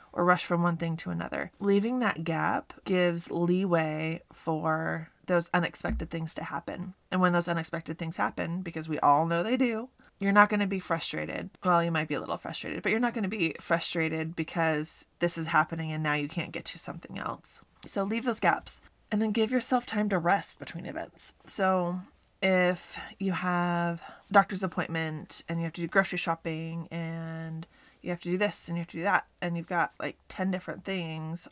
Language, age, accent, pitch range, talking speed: English, 20-39, American, 165-205 Hz, 205 wpm